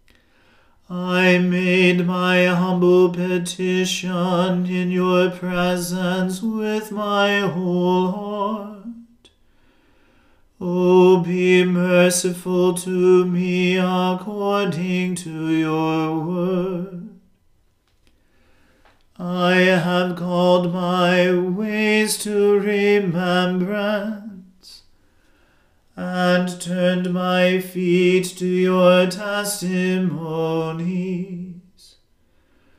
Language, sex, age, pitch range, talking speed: English, male, 40-59, 180-200 Hz, 65 wpm